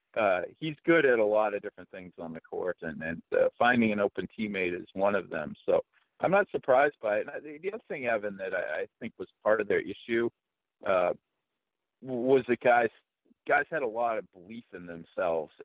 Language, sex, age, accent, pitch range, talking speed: English, male, 50-69, American, 105-155 Hz, 215 wpm